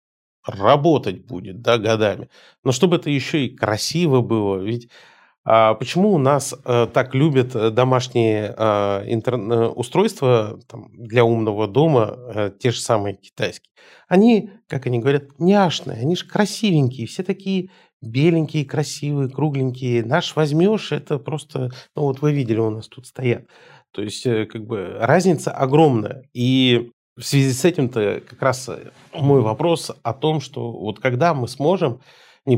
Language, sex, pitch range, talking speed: Russian, male, 115-150 Hz, 135 wpm